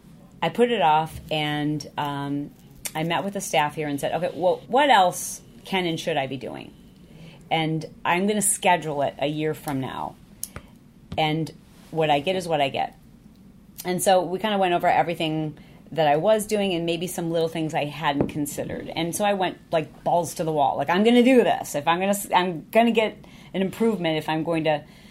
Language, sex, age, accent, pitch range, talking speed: English, female, 40-59, American, 150-195 Hz, 220 wpm